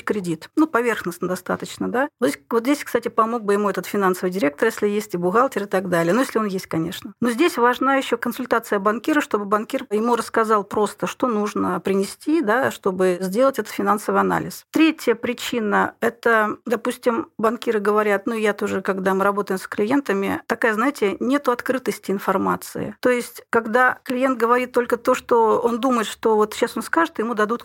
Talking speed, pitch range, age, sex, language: 180 wpm, 205-245 Hz, 40-59, female, Russian